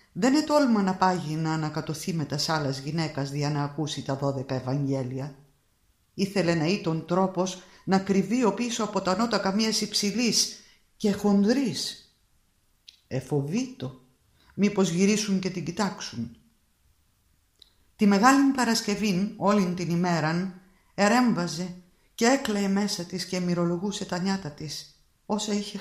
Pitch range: 150-210 Hz